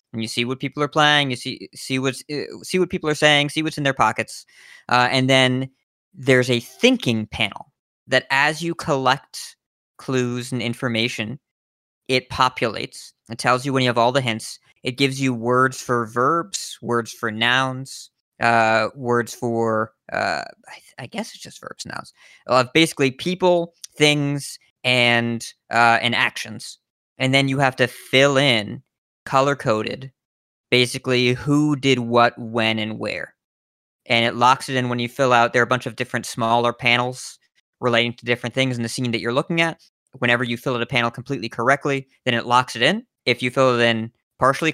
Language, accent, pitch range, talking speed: English, American, 120-135 Hz, 185 wpm